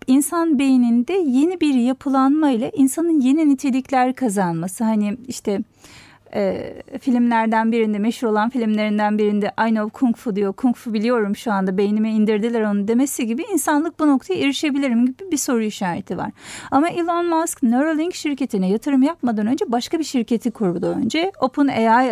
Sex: female